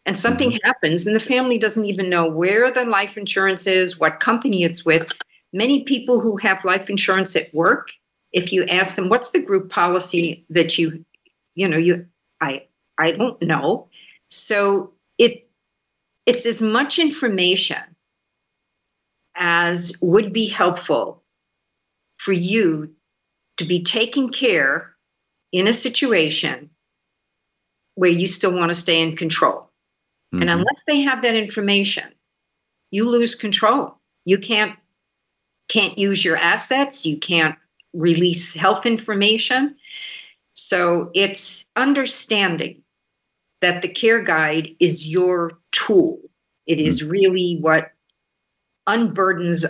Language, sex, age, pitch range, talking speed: English, female, 50-69, 170-235 Hz, 125 wpm